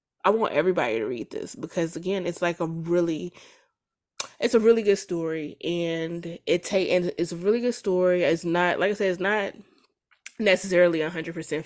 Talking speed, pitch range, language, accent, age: 180 wpm, 160-185 Hz, English, American, 20-39